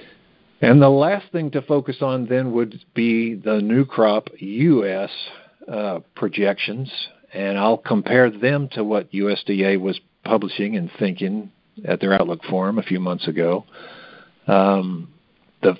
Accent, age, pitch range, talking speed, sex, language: American, 50-69, 95-130 Hz, 140 wpm, male, English